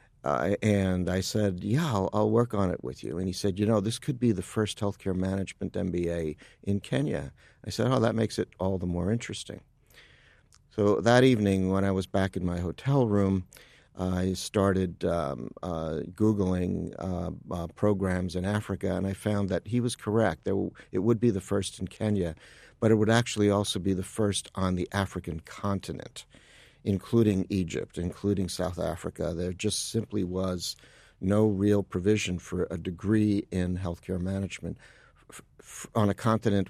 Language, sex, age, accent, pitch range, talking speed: English, male, 50-69, American, 90-110 Hz, 180 wpm